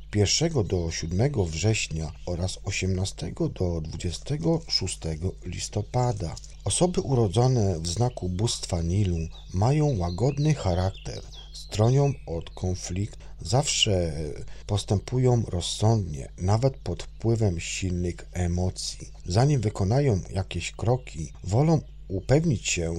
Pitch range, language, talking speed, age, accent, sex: 90-120 Hz, Polish, 95 wpm, 40-59, native, male